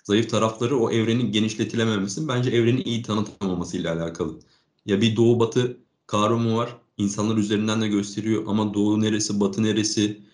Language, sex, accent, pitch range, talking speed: Turkish, male, native, 100-115 Hz, 145 wpm